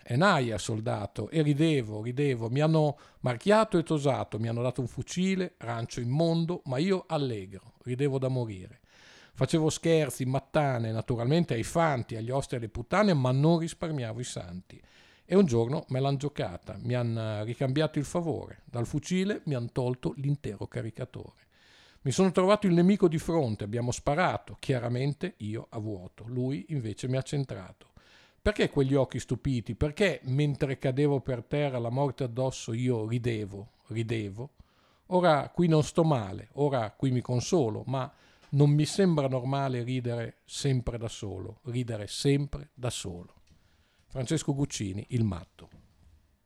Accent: native